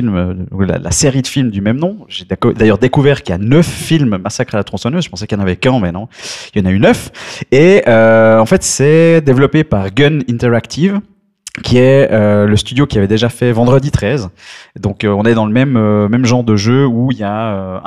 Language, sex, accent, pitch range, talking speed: French, male, French, 105-130 Hz, 245 wpm